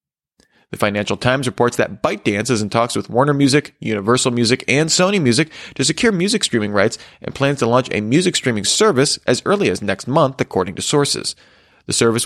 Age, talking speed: 30-49, 195 wpm